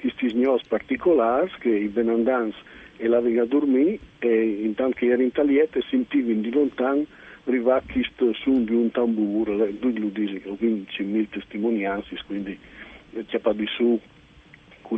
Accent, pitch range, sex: native, 110-140 Hz, male